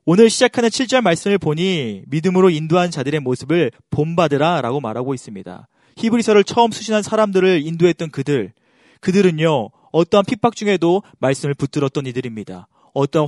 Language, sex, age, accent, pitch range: Korean, male, 30-49, native, 140-185 Hz